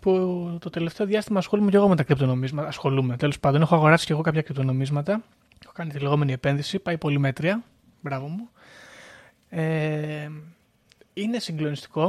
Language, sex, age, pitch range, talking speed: Greek, male, 20-39, 140-180 Hz, 155 wpm